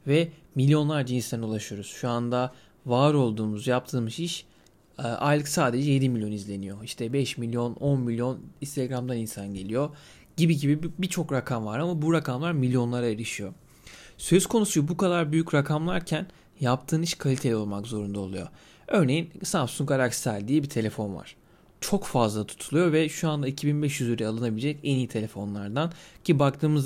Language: Turkish